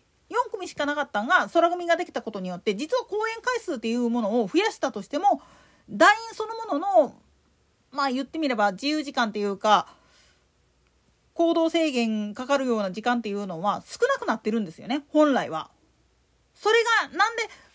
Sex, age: female, 40-59